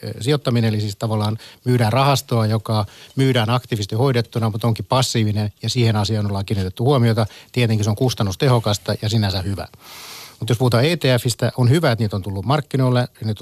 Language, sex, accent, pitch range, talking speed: Finnish, male, native, 110-125 Hz, 170 wpm